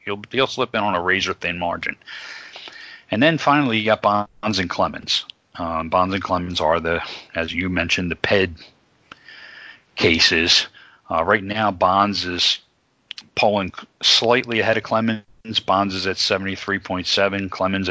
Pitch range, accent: 95-120 Hz, American